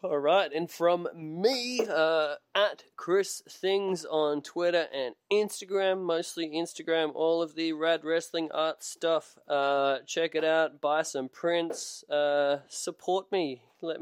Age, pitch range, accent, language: 20-39, 140-170 Hz, Australian, English